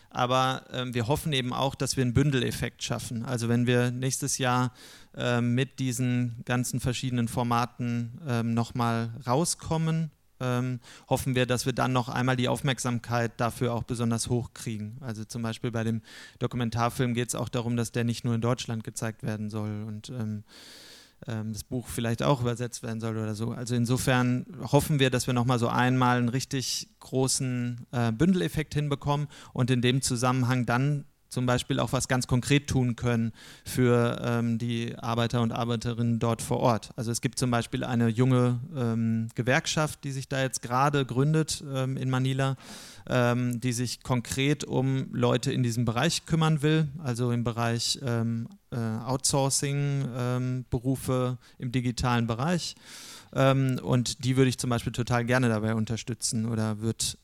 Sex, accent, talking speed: male, German, 170 wpm